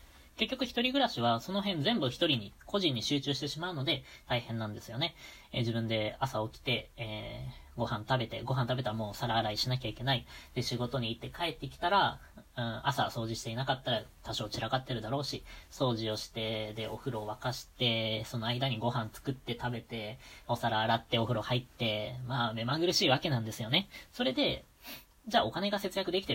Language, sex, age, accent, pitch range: Japanese, female, 20-39, native, 110-140 Hz